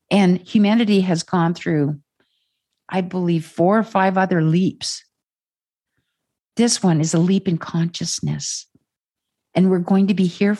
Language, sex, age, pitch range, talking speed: English, female, 50-69, 150-185 Hz, 140 wpm